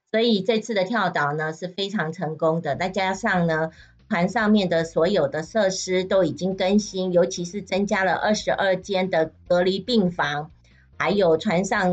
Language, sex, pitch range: Chinese, female, 160-215 Hz